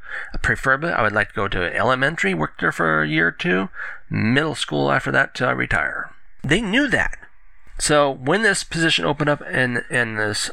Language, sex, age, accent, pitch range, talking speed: English, male, 30-49, American, 100-125 Hz, 195 wpm